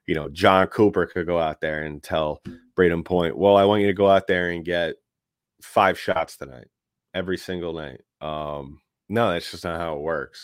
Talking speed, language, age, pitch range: 200 wpm, English, 30-49, 75-95 Hz